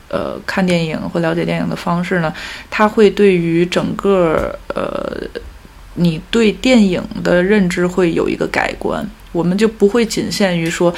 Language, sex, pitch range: Chinese, female, 175-215 Hz